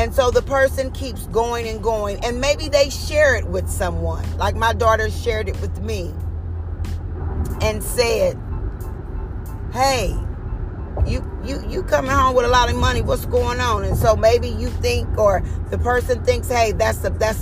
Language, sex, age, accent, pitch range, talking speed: English, female, 40-59, American, 90-100 Hz, 175 wpm